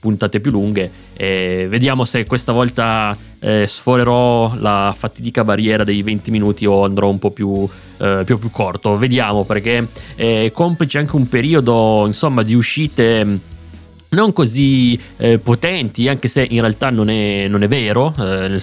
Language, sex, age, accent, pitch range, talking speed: Italian, male, 20-39, native, 100-125 Hz, 165 wpm